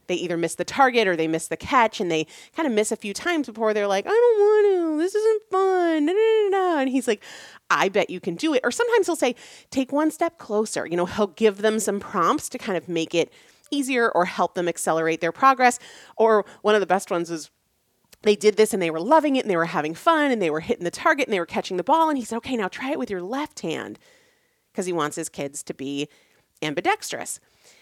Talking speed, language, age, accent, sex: 250 wpm, English, 30-49, American, female